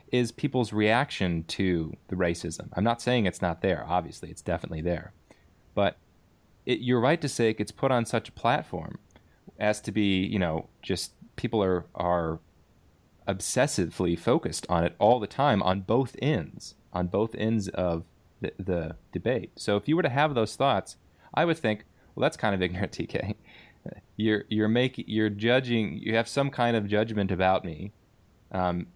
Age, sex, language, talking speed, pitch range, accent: 30-49, male, English, 175 wpm, 90-115 Hz, American